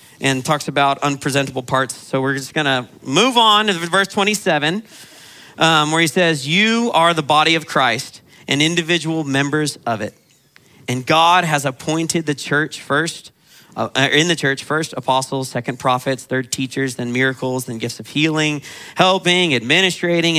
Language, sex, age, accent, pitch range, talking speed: English, male, 40-59, American, 130-165 Hz, 160 wpm